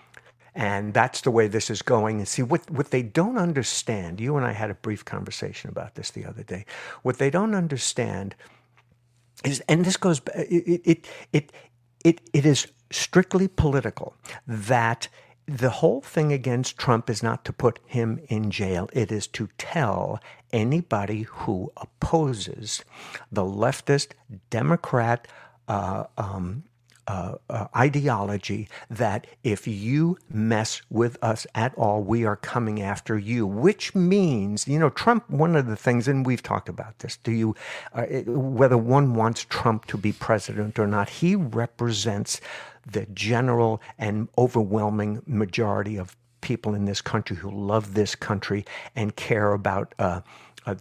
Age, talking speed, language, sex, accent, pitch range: 60-79, 155 wpm, English, male, American, 110-135 Hz